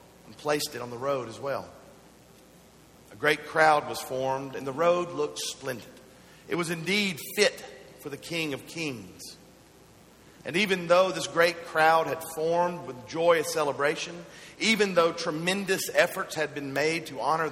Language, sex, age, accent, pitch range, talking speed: English, male, 50-69, American, 135-175 Hz, 160 wpm